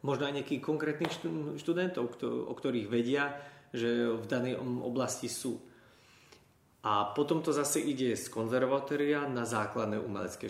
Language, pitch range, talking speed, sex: Slovak, 110-130 Hz, 130 wpm, male